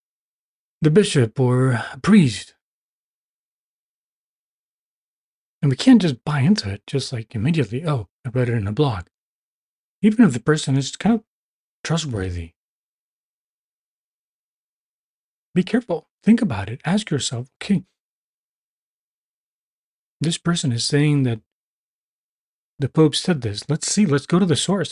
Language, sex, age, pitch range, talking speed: English, male, 40-59, 120-165 Hz, 130 wpm